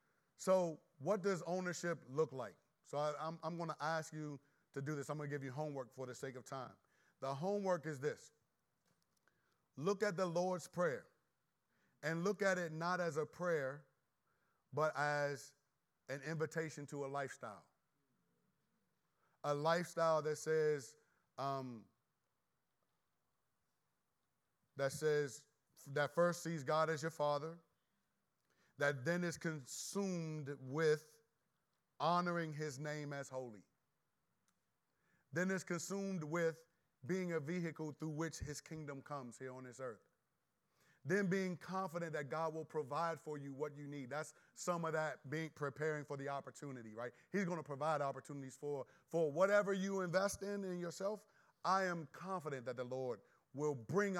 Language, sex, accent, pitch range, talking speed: English, male, American, 140-170 Hz, 145 wpm